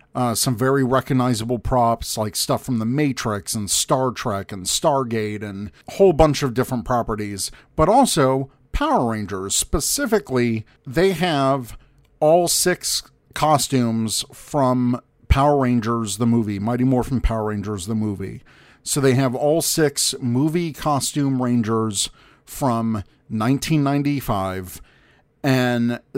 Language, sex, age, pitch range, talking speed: English, male, 40-59, 115-140 Hz, 120 wpm